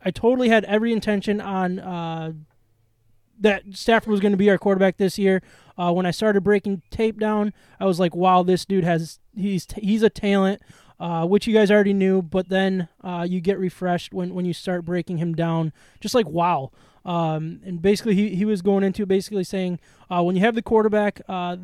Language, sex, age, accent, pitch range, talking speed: English, male, 20-39, American, 175-205 Hz, 200 wpm